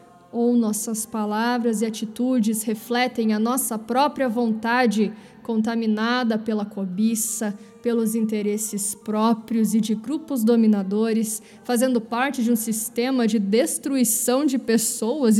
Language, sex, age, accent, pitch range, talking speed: Portuguese, female, 20-39, Brazilian, 215-250 Hz, 115 wpm